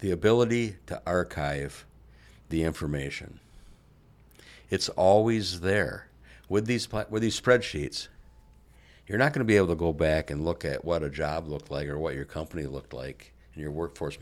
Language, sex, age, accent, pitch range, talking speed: English, male, 60-79, American, 70-95 Hz, 170 wpm